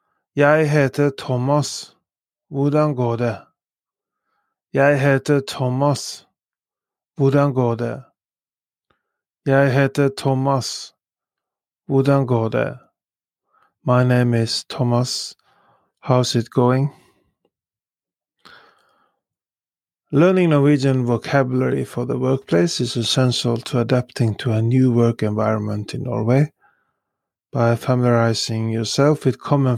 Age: 30-49